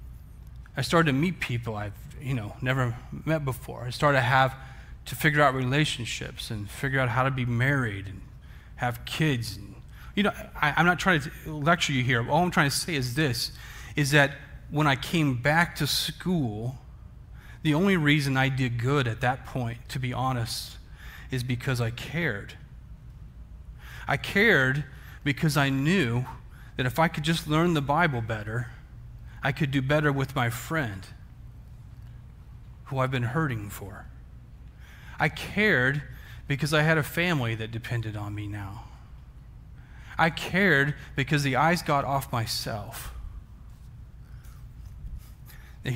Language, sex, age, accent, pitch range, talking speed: English, male, 30-49, American, 115-150 Hz, 150 wpm